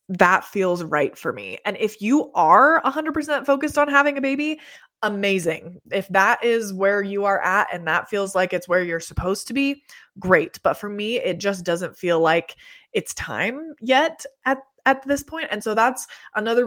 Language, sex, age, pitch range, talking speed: English, female, 20-39, 180-250 Hz, 190 wpm